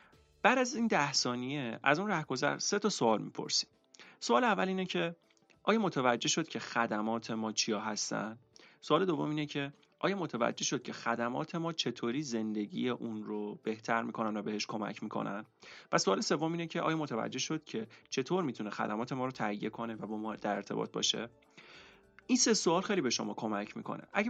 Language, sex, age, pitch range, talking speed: Persian, male, 30-49, 110-155 Hz, 185 wpm